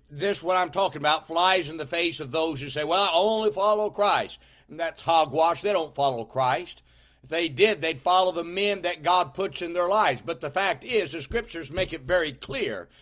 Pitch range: 155-205 Hz